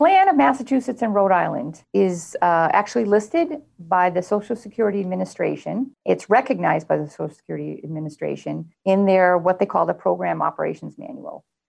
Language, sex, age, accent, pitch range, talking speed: English, female, 40-59, American, 160-200 Hz, 165 wpm